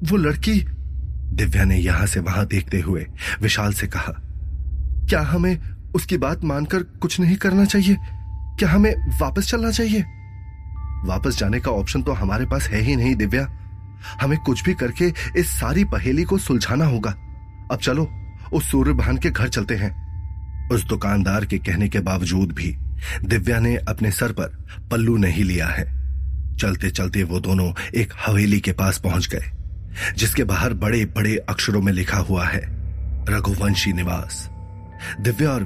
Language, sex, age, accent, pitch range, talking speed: Hindi, male, 30-49, native, 90-115 Hz, 160 wpm